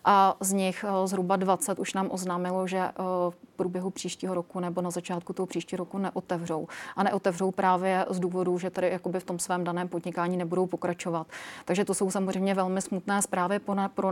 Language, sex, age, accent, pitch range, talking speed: Czech, female, 30-49, native, 185-200 Hz, 185 wpm